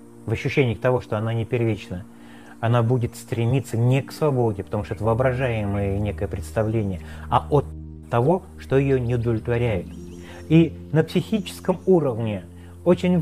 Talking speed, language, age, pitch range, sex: 140 wpm, Russian, 30-49, 105-145 Hz, male